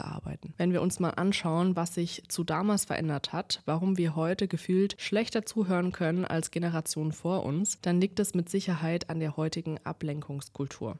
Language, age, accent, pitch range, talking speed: German, 20-39, German, 160-190 Hz, 175 wpm